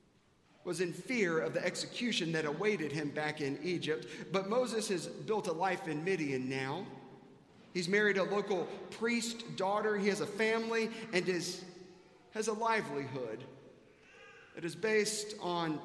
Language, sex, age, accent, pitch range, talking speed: English, male, 40-59, American, 160-220 Hz, 150 wpm